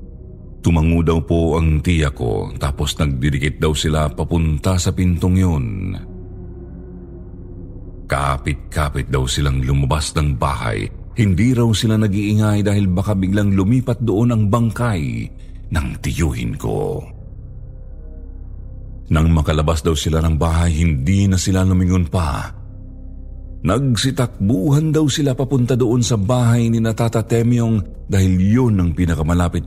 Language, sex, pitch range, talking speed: Filipino, male, 80-105 Hz, 115 wpm